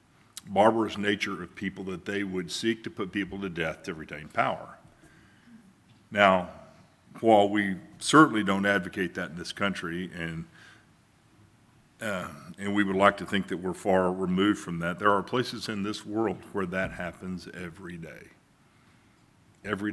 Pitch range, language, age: 85-105 Hz, English, 50-69